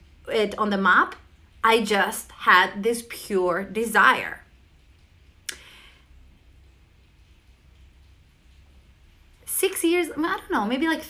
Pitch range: 190-290 Hz